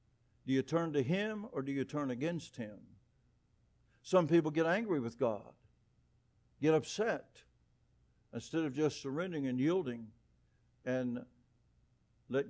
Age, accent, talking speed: 60-79, American, 130 wpm